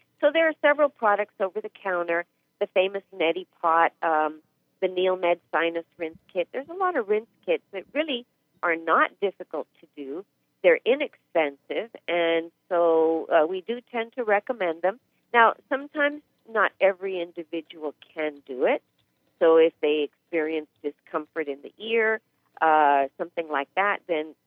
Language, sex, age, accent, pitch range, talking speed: English, female, 50-69, American, 165-215 Hz, 155 wpm